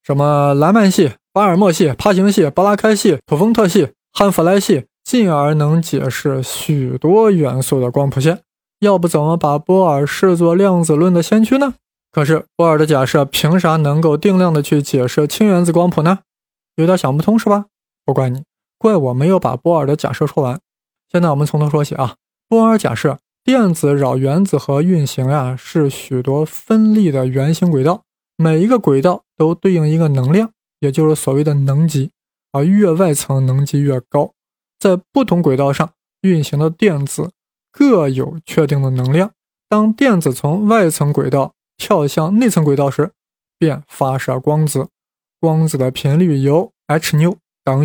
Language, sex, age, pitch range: Chinese, male, 20-39, 140-190 Hz